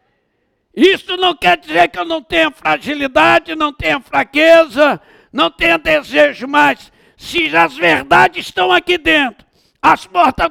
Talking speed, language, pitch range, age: 135 wpm, Portuguese, 235-330 Hz, 60-79